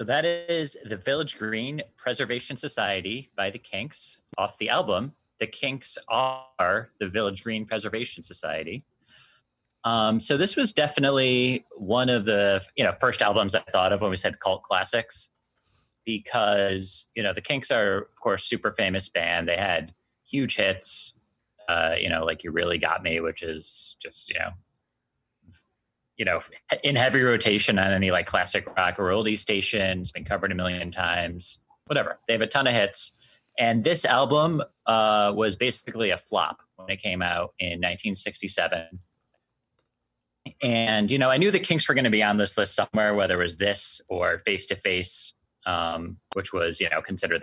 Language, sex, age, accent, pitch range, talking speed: English, male, 30-49, American, 95-125 Hz, 175 wpm